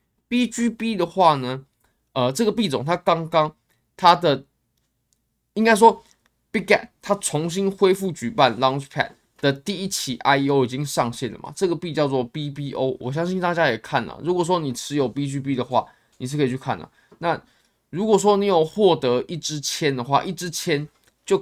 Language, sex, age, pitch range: Chinese, male, 20-39, 125-180 Hz